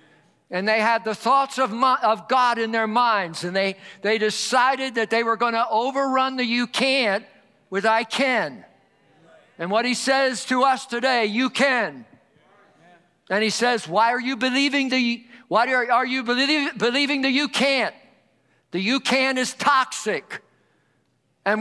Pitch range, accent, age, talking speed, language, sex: 220-260 Hz, American, 50-69, 165 wpm, English, male